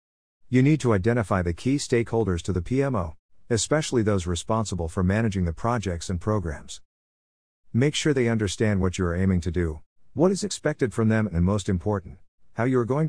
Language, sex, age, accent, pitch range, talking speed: English, male, 50-69, American, 90-115 Hz, 190 wpm